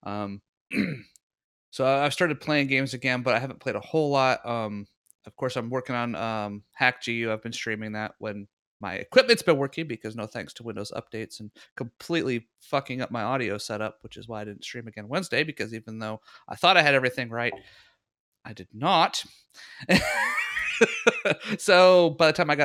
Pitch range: 110-130 Hz